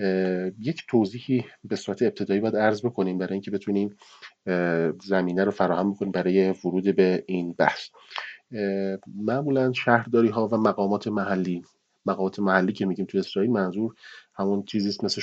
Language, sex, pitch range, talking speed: Persian, male, 95-115 Hz, 140 wpm